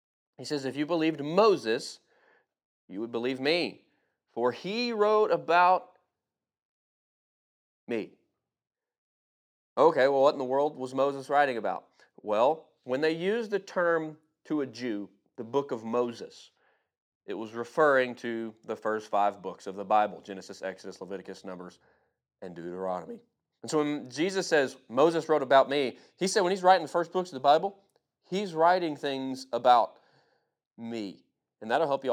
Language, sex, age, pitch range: English, male, 40-59, 120-180 Hz